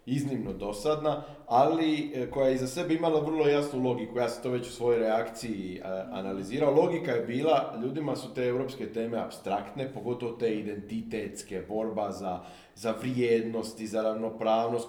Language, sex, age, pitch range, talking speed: Croatian, male, 40-59, 110-140 Hz, 155 wpm